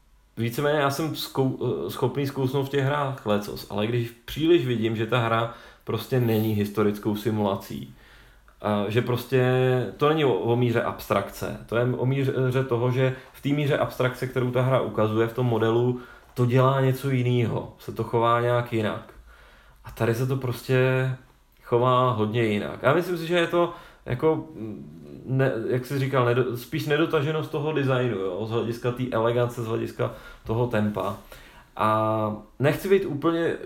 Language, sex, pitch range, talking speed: Czech, male, 115-135 Hz, 160 wpm